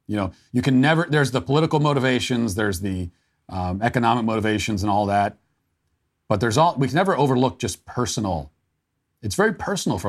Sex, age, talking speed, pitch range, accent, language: male, 40-59, 180 wpm, 105-140 Hz, American, English